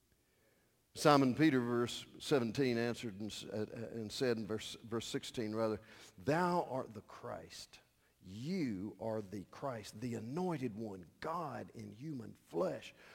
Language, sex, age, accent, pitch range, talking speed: English, male, 50-69, American, 105-135 Hz, 130 wpm